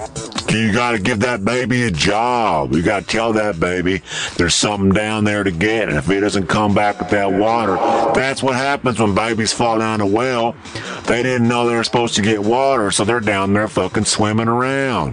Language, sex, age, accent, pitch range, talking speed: English, male, 50-69, American, 90-120 Hz, 205 wpm